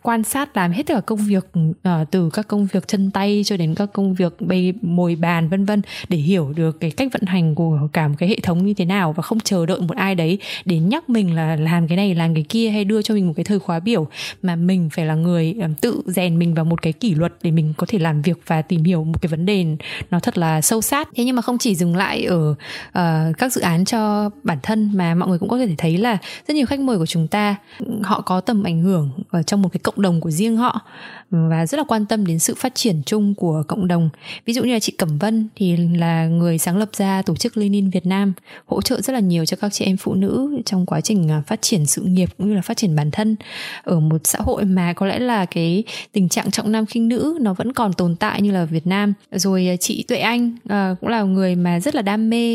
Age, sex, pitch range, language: 20-39, female, 170-220 Hz, Vietnamese